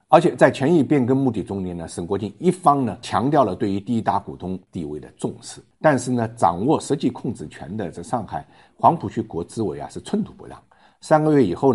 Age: 50-69